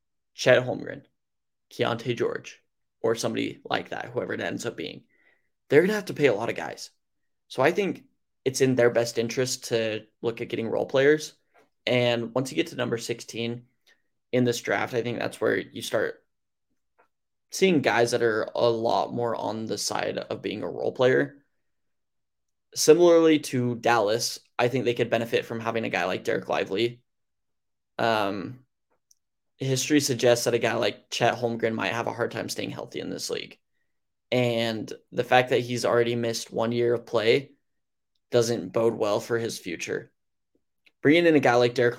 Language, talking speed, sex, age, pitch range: English, 180 wpm, male, 20-39, 115-130 Hz